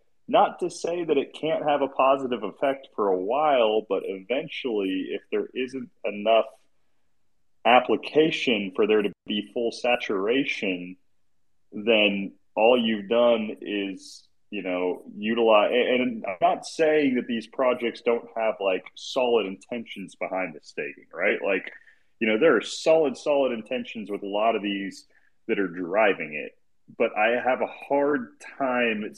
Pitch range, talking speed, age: 105-145 Hz, 150 wpm, 30-49